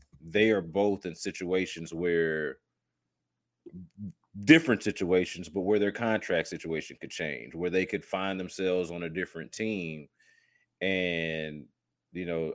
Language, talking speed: English, 130 wpm